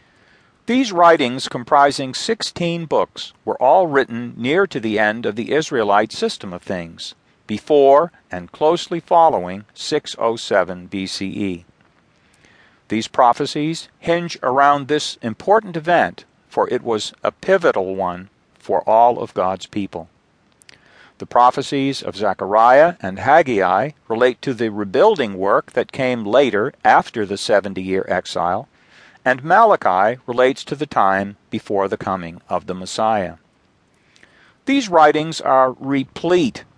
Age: 50-69